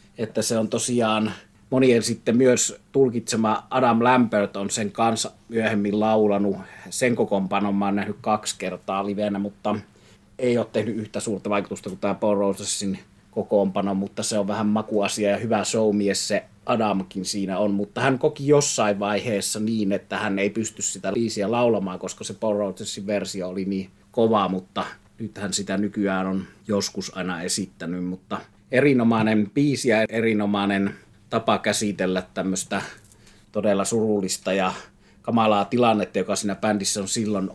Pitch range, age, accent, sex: 100-110 Hz, 30-49, native, male